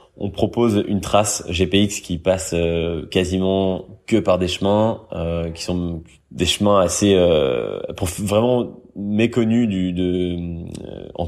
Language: French